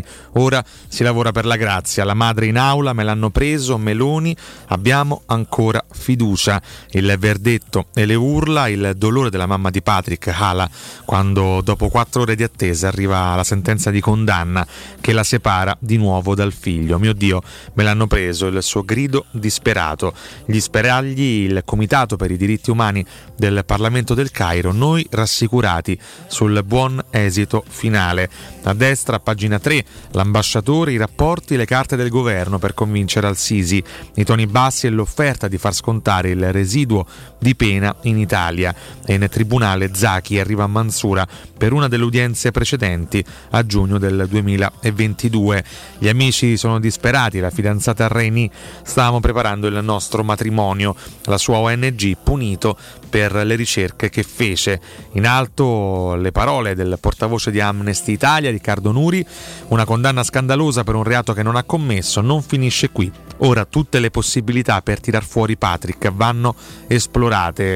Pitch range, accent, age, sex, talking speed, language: 100-120 Hz, native, 30-49, male, 155 wpm, Italian